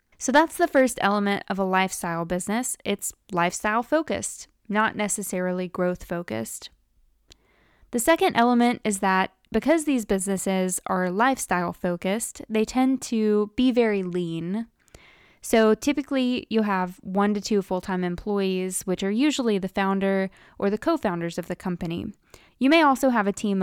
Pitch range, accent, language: 180-230 Hz, American, English